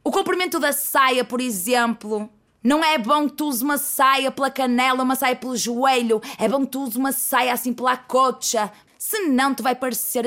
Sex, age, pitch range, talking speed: female, 20-39, 225-275 Hz, 200 wpm